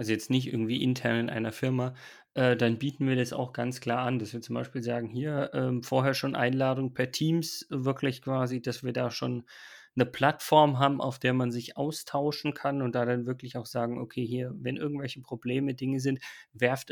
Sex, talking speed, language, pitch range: male, 205 wpm, German, 125-145 Hz